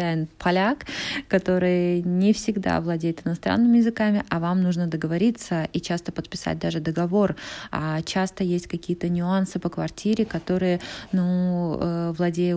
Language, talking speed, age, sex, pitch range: Polish, 125 wpm, 20-39, female, 170-205 Hz